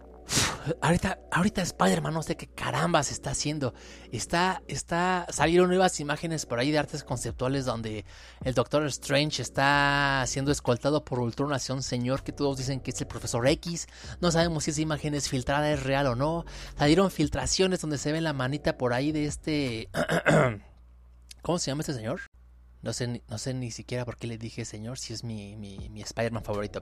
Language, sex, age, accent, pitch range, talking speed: Spanish, male, 30-49, Mexican, 115-160 Hz, 180 wpm